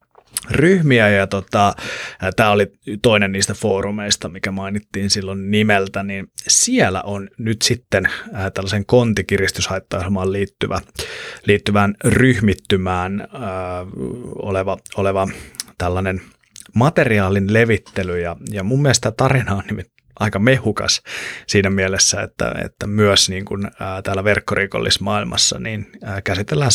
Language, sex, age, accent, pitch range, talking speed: Finnish, male, 30-49, native, 95-110 Hz, 105 wpm